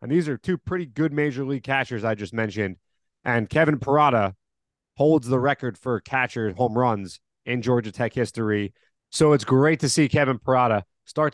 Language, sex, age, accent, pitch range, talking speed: English, male, 30-49, American, 110-150 Hz, 180 wpm